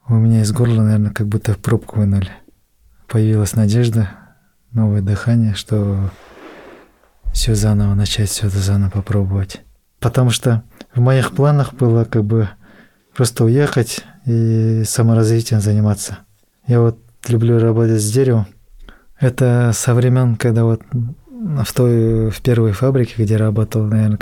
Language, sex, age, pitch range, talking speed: Russian, male, 20-39, 105-120 Hz, 135 wpm